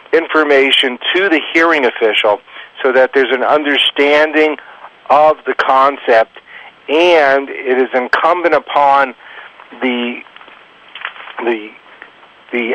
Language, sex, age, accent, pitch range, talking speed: English, male, 50-69, American, 135-165 Hz, 100 wpm